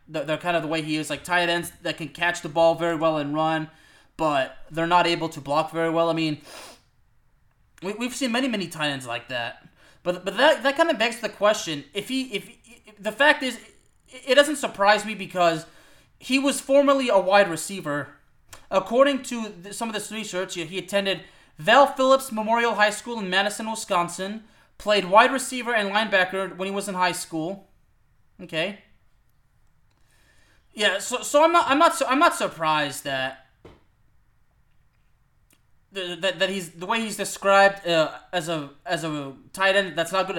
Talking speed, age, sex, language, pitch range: 190 wpm, 20-39, male, English, 165-220 Hz